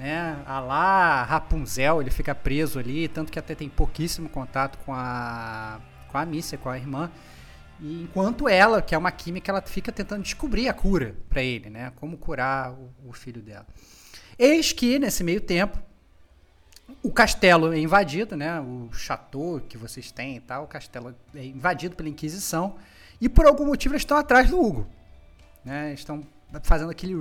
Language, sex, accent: Portuguese, male, Brazilian